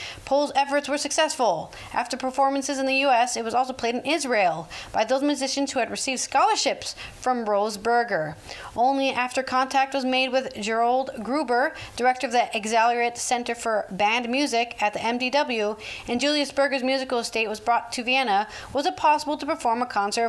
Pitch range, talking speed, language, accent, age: 210-285 Hz, 175 wpm, English, American, 40-59